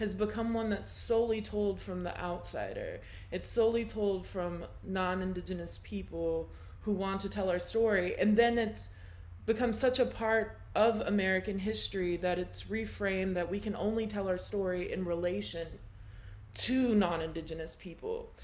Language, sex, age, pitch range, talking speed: English, female, 20-39, 180-230 Hz, 150 wpm